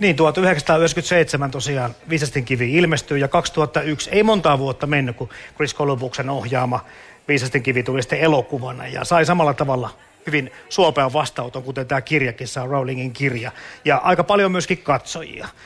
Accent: native